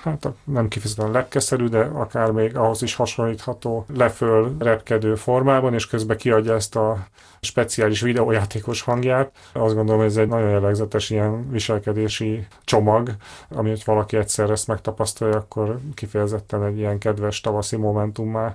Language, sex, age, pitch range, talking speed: Hungarian, male, 30-49, 105-115 Hz, 145 wpm